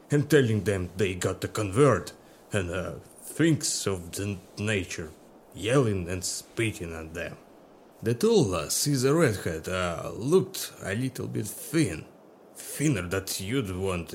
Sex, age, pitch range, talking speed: male, 30-49, 90-135 Hz, 145 wpm